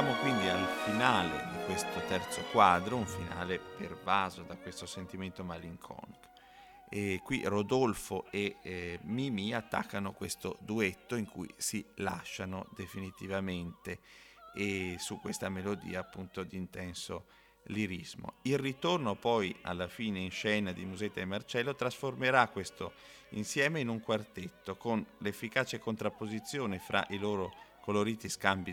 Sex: male